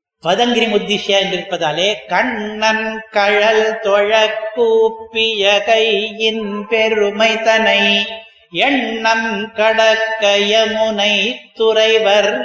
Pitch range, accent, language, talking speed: 200-225 Hz, native, Tamil, 60 wpm